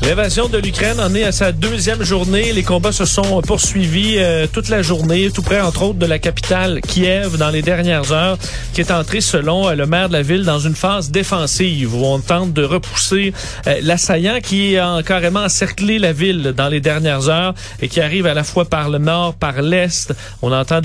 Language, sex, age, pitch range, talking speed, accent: French, male, 40-59, 150-185 Hz, 215 wpm, Canadian